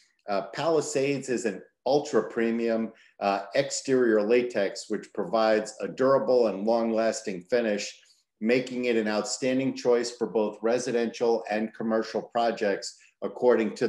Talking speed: 115 wpm